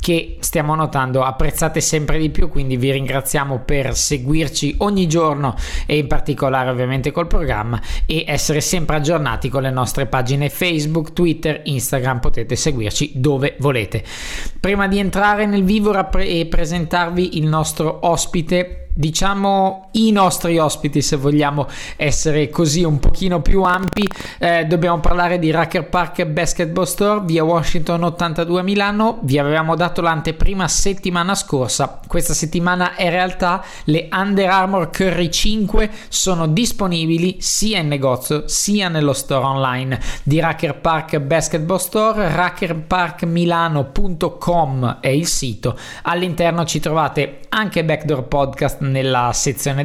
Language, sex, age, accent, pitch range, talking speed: Italian, male, 20-39, native, 145-180 Hz, 130 wpm